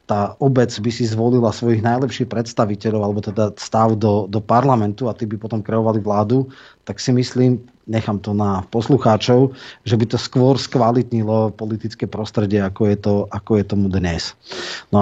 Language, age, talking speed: Slovak, 30-49, 170 wpm